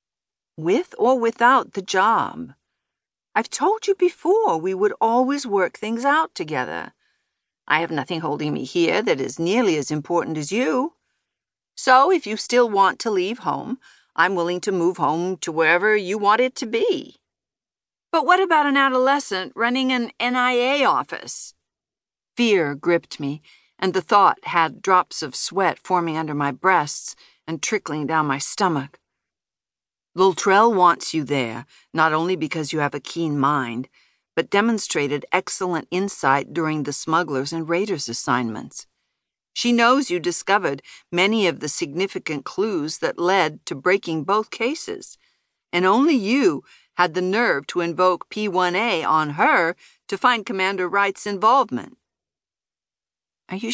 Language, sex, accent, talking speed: English, female, American, 145 wpm